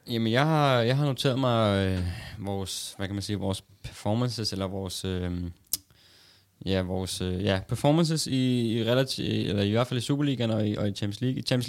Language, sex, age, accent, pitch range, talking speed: Danish, male, 20-39, native, 100-115 Hz, 205 wpm